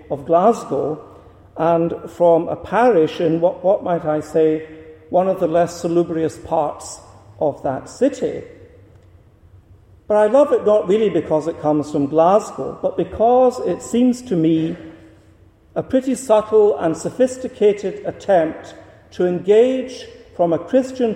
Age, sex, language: 50-69, male, English